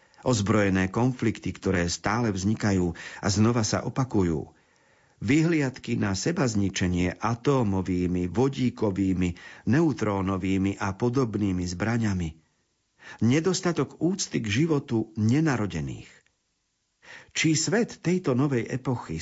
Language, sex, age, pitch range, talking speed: Slovak, male, 50-69, 100-130 Hz, 85 wpm